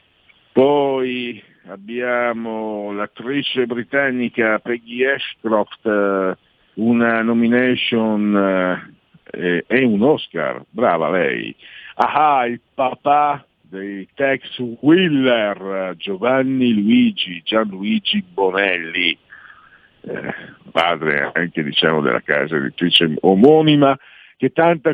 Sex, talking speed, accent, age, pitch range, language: male, 80 wpm, native, 60-79, 105-155 Hz, Italian